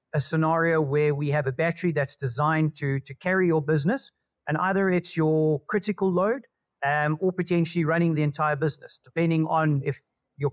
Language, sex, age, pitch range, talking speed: English, male, 40-59, 145-175 Hz, 175 wpm